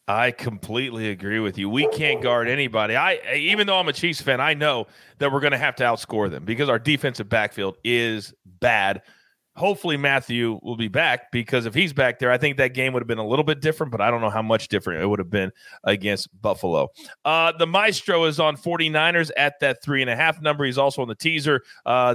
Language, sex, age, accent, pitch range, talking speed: English, male, 30-49, American, 115-170 Hz, 220 wpm